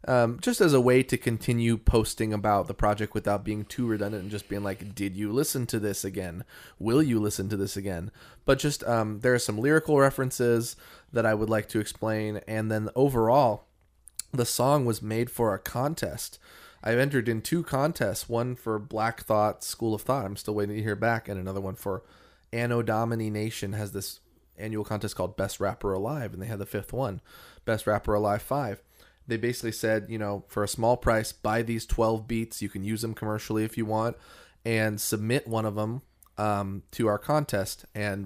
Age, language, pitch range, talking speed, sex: 20-39, English, 105-125 Hz, 200 wpm, male